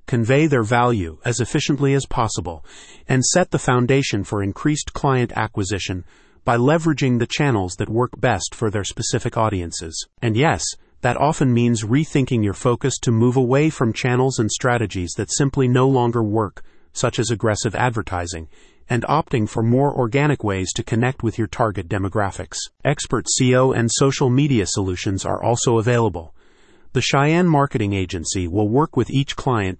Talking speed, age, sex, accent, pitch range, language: 160 wpm, 40-59, male, American, 105-135 Hz, English